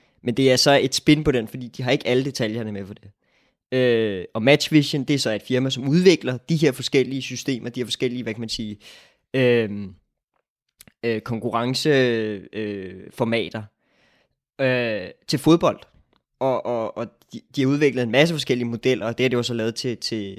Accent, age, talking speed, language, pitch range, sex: native, 20-39, 190 wpm, Danish, 110-130 Hz, male